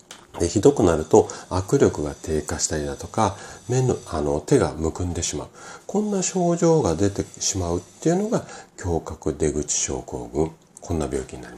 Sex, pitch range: male, 80-130 Hz